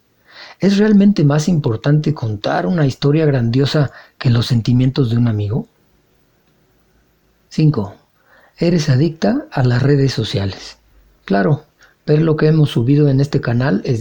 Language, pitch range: Spanish, 120-155 Hz